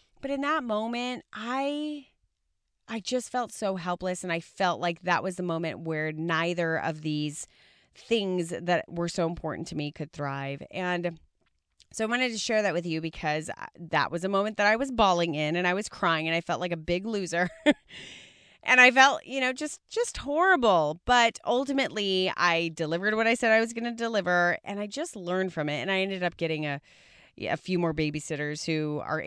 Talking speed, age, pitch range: 205 wpm, 30-49, 160-210 Hz